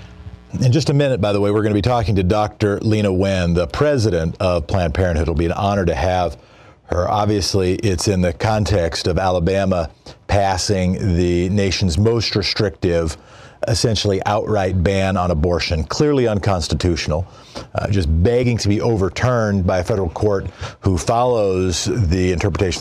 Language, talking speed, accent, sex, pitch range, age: English, 160 wpm, American, male, 90-115 Hz, 40-59